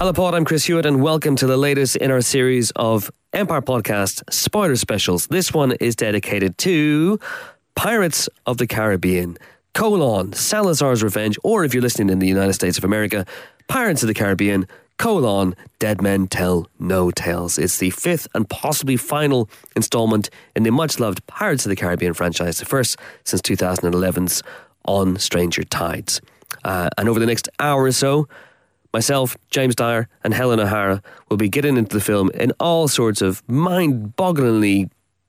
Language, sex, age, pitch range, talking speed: English, male, 30-49, 95-135 Hz, 165 wpm